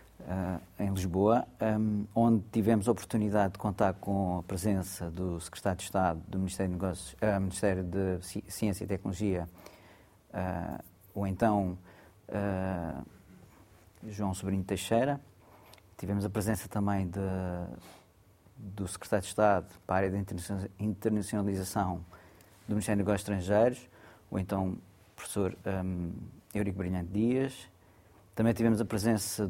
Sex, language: male, Portuguese